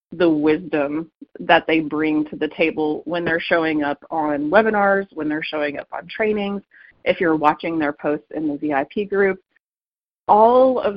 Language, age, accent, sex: English, 30-49, American, female